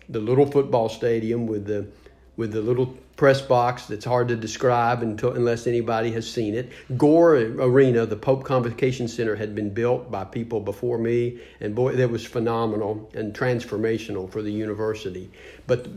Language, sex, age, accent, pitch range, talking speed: English, male, 50-69, American, 110-125 Hz, 170 wpm